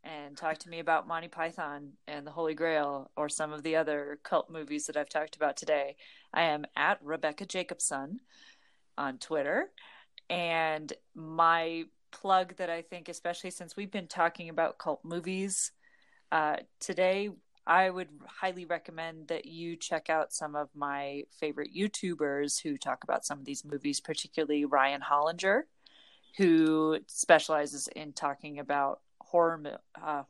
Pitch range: 145-175 Hz